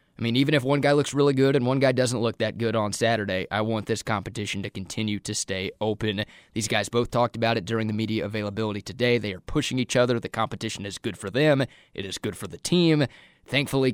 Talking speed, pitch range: 240 wpm, 105-130 Hz